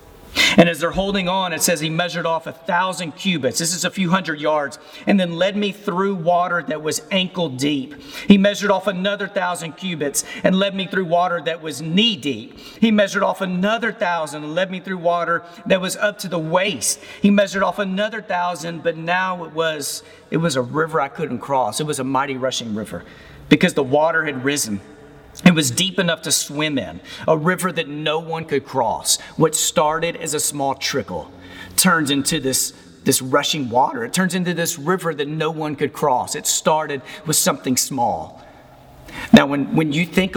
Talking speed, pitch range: 195 wpm, 145-185 Hz